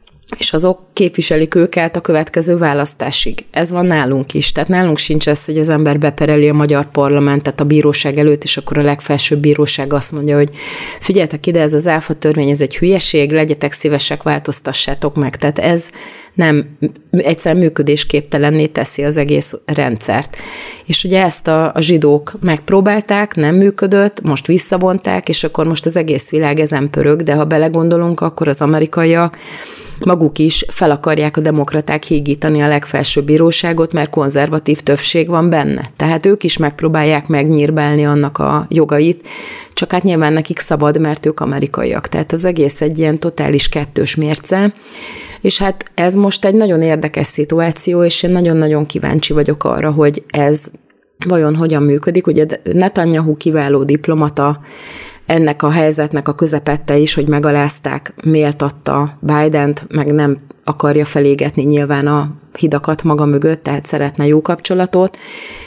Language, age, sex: Hungarian, 30-49, female